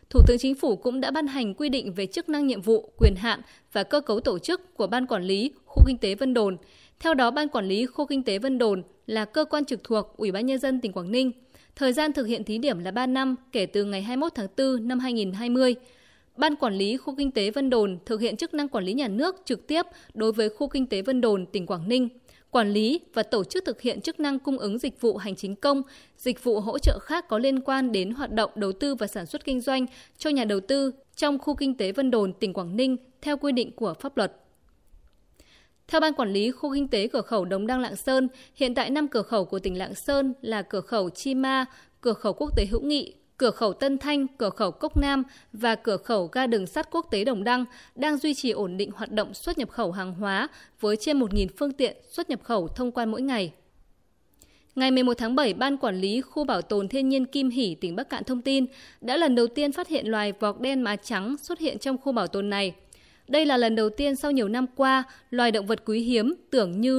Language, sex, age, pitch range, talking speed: Vietnamese, female, 20-39, 210-275 Hz, 250 wpm